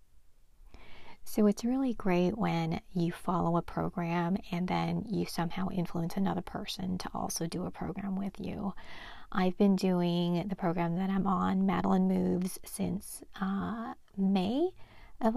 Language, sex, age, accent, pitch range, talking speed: English, female, 40-59, American, 175-205 Hz, 145 wpm